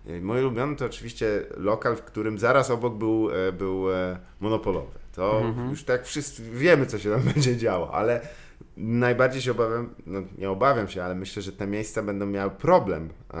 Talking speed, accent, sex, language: 170 wpm, native, male, Polish